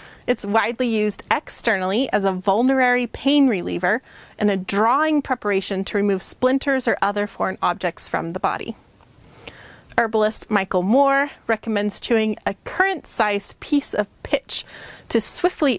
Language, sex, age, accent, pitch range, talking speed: English, female, 30-49, American, 200-265 Hz, 135 wpm